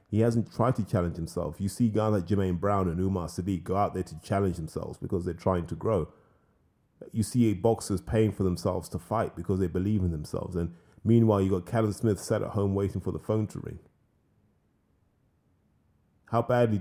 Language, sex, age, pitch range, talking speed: English, male, 30-49, 90-110 Hz, 205 wpm